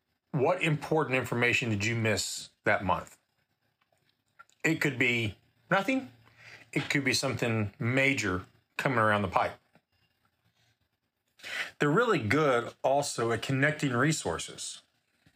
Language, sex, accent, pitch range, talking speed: English, male, American, 115-140 Hz, 110 wpm